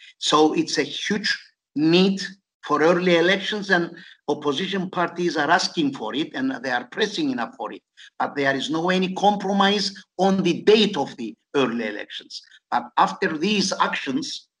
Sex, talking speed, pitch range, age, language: male, 160 wpm, 145-225 Hz, 50-69, Turkish